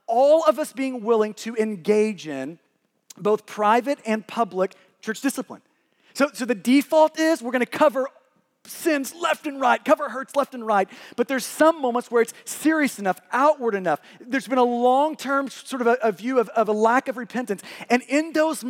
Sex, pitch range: male, 215-275 Hz